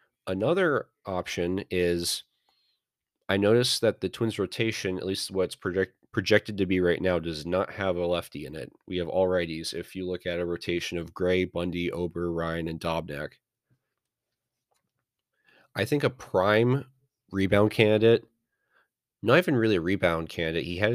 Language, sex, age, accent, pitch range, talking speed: English, male, 30-49, American, 85-110 Hz, 160 wpm